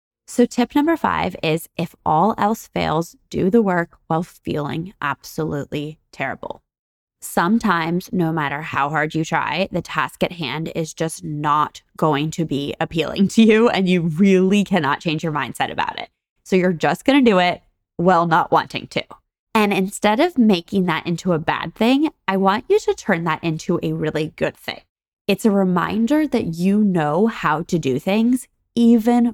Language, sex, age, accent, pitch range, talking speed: English, female, 20-39, American, 155-200 Hz, 175 wpm